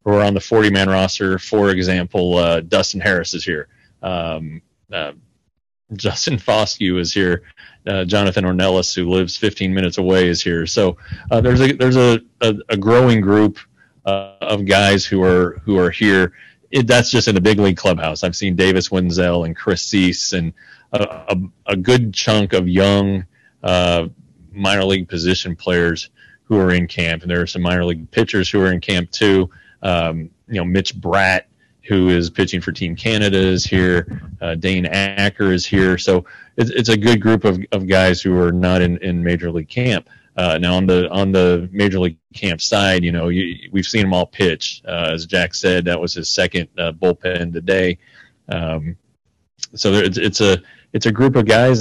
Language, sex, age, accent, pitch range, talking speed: English, male, 30-49, American, 90-105 Hz, 195 wpm